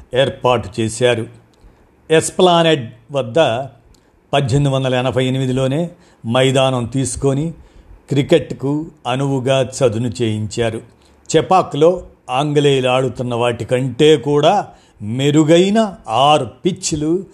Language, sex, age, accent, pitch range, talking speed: Telugu, male, 50-69, native, 120-150 Hz, 70 wpm